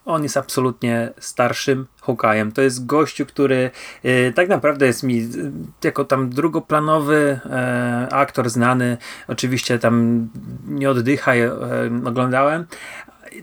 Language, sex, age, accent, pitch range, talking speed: Polish, male, 30-49, native, 120-145 Hz, 120 wpm